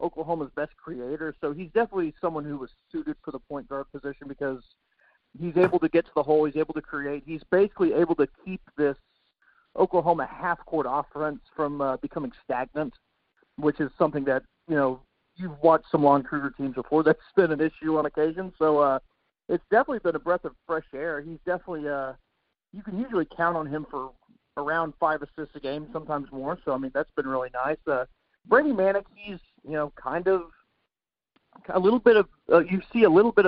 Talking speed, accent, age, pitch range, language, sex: 200 wpm, American, 50-69, 145-175 Hz, English, male